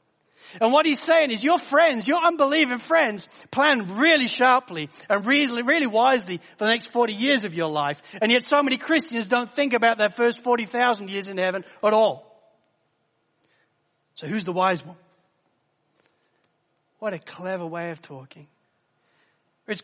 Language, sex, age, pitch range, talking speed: English, male, 40-59, 170-245 Hz, 160 wpm